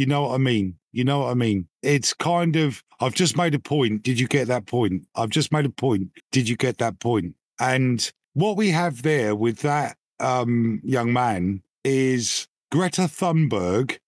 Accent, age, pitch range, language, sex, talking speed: British, 50-69, 125-160 Hz, English, male, 195 wpm